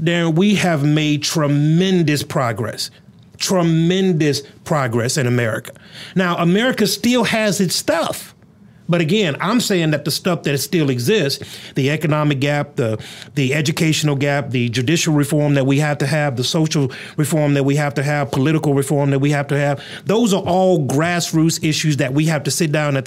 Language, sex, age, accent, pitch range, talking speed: English, male, 30-49, American, 145-195 Hz, 175 wpm